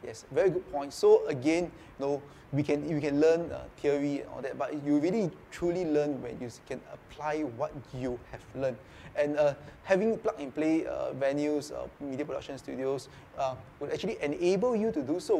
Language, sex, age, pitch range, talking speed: English, male, 20-39, 135-165 Hz, 200 wpm